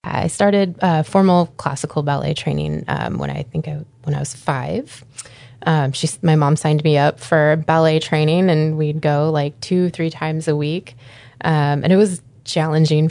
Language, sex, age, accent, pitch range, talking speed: English, female, 20-39, American, 135-160 Hz, 175 wpm